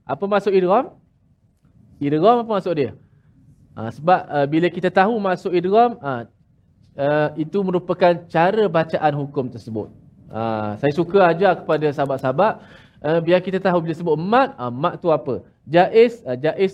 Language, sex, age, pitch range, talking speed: Malayalam, male, 20-39, 140-190 Hz, 160 wpm